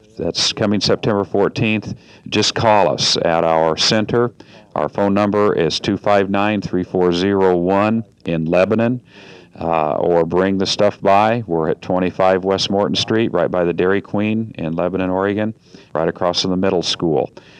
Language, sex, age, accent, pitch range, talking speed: English, male, 50-69, American, 85-105 Hz, 145 wpm